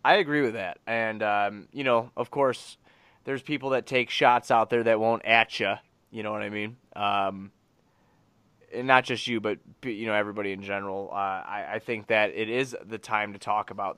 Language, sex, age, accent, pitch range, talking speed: English, male, 20-39, American, 100-125 Hz, 210 wpm